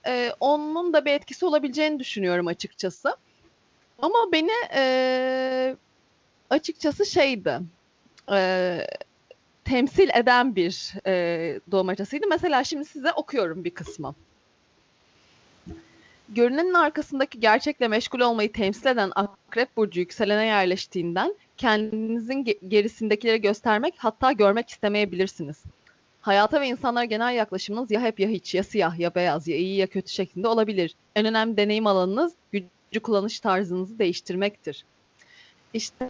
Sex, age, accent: female, 30-49, native